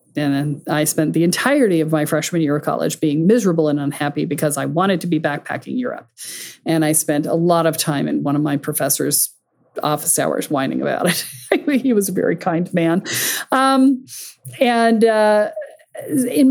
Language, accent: English, American